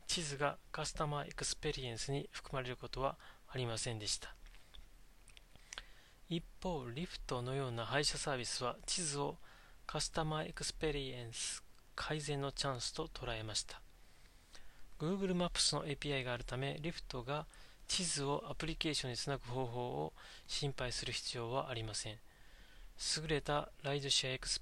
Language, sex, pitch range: Japanese, male, 125-155 Hz